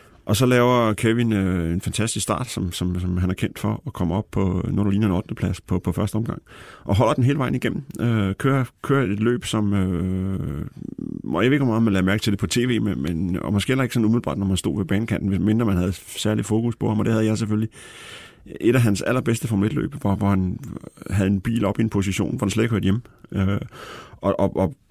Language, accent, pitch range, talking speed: Danish, native, 95-115 Hz, 250 wpm